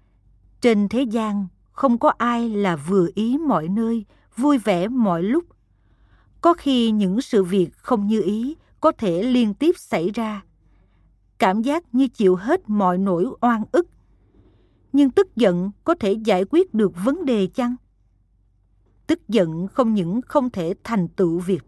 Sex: female